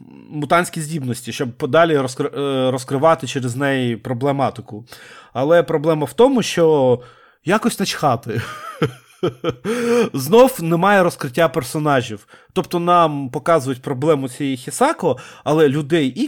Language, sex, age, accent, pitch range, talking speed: Ukrainian, male, 30-49, native, 135-185 Hz, 105 wpm